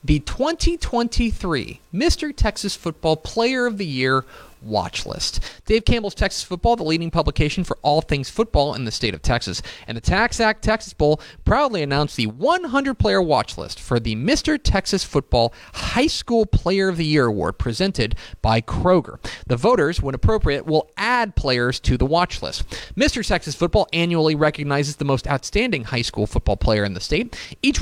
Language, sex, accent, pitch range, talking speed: English, male, American, 120-190 Hz, 175 wpm